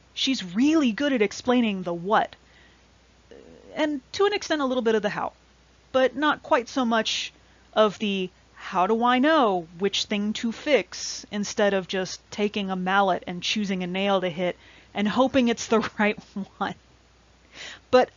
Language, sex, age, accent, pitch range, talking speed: English, female, 30-49, American, 190-245 Hz, 170 wpm